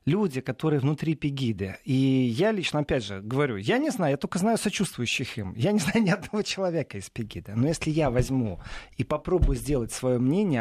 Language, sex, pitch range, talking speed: Russian, male, 125-190 Hz, 200 wpm